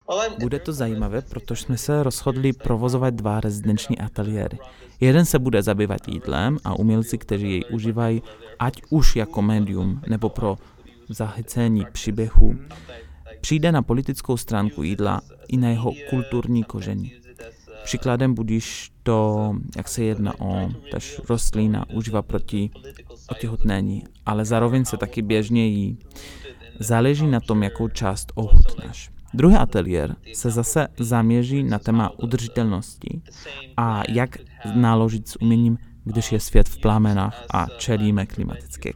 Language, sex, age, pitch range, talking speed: Czech, male, 30-49, 105-120 Hz, 130 wpm